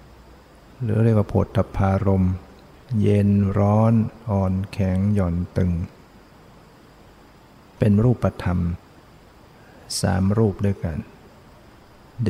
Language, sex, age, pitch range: Thai, male, 60-79, 95-110 Hz